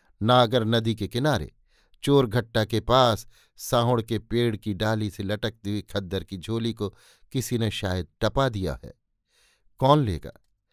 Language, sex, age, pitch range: Hindi, male, 50-69, 105-125 Hz